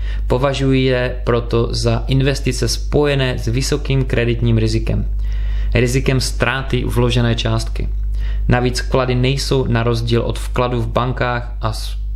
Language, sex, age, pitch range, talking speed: Czech, male, 20-39, 105-125 Hz, 115 wpm